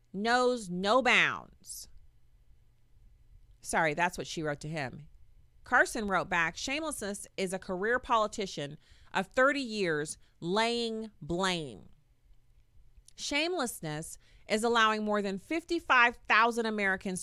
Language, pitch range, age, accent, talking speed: English, 175-235 Hz, 40-59, American, 105 wpm